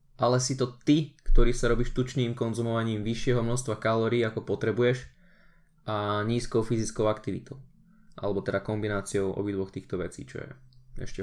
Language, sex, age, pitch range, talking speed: Slovak, male, 20-39, 105-130 Hz, 145 wpm